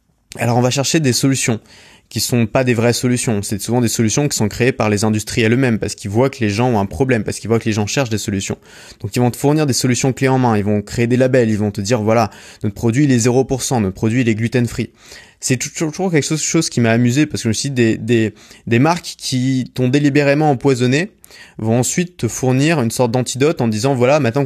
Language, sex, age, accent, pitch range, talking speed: French, male, 20-39, French, 110-130 Hz, 255 wpm